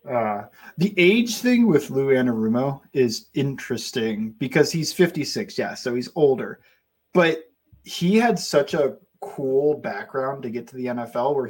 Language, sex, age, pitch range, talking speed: English, male, 30-49, 125-180 Hz, 150 wpm